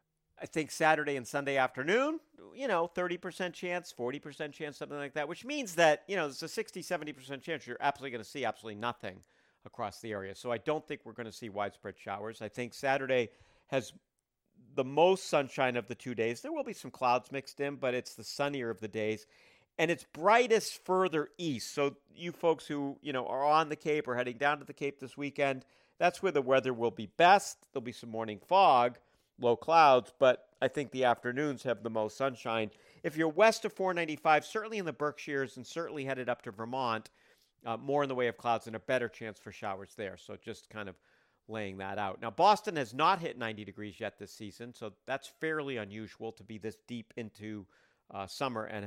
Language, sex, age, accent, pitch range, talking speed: English, male, 50-69, American, 110-150 Hz, 215 wpm